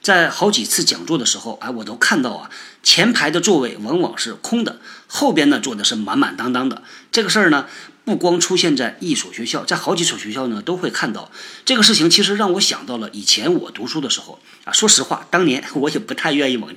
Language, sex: Chinese, male